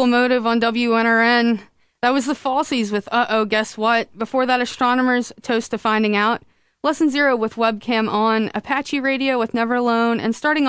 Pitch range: 215-260 Hz